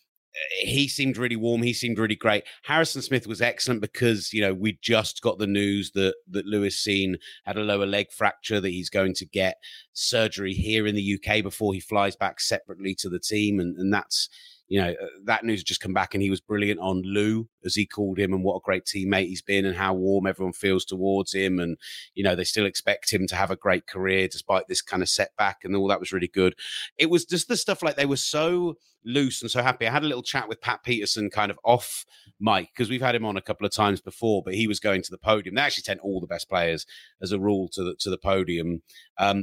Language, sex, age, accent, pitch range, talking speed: English, male, 30-49, British, 95-130 Hz, 245 wpm